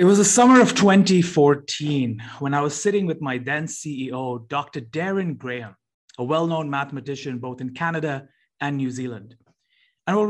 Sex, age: male, 30-49